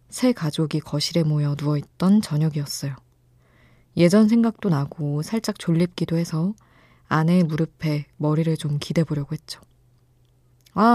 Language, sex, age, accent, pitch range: Korean, female, 20-39, native, 130-175 Hz